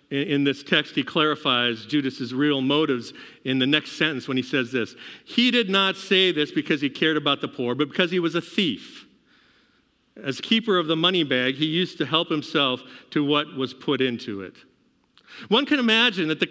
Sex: male